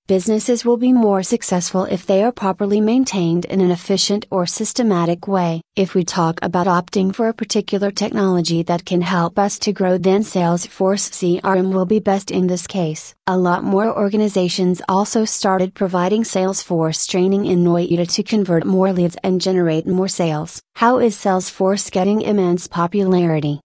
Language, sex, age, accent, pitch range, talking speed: English, female, 40-59, American, 175-200 Hz, 165 wpm